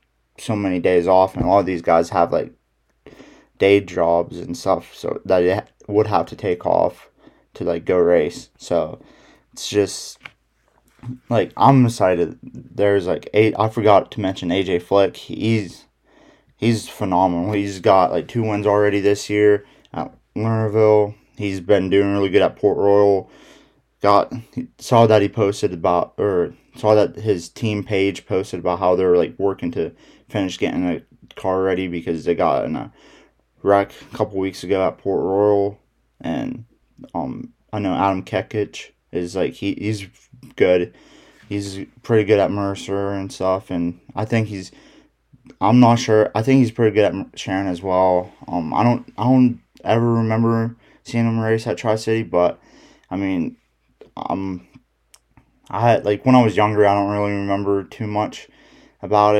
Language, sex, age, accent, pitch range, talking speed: English, male, 20-39, American, 95-110 Hz, 170 wpm